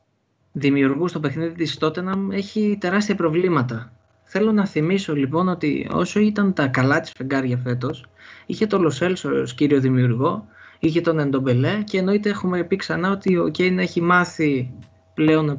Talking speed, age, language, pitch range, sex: 160 wpm, 20-39, Greek, 130-170 Hz, male